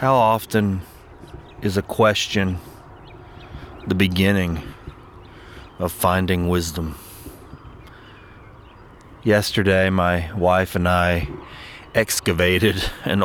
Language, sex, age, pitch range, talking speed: English, male, 30-49, 85-100 Hz, 75 wpm